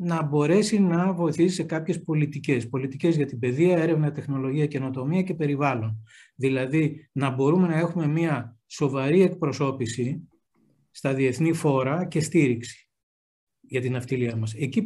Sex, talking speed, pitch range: male, 135 wpm, 135-170 Hz